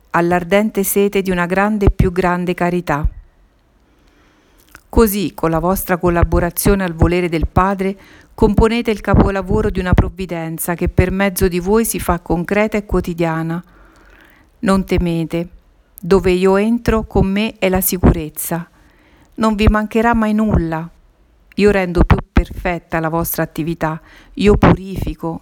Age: 50-69